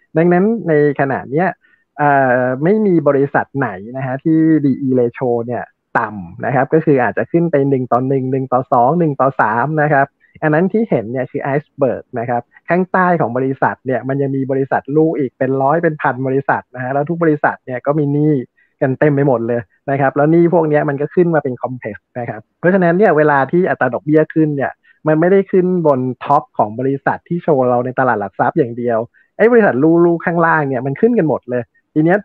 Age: 20-39